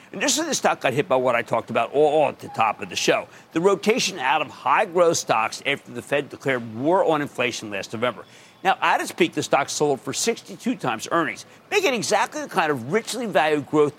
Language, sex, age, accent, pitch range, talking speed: English, male, 50-69, American, 150-230 Hz, 230 wpm